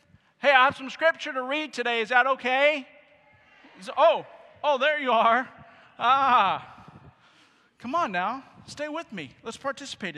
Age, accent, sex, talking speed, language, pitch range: 40-59, American, male, 145 wpm, English, 140-200 Hz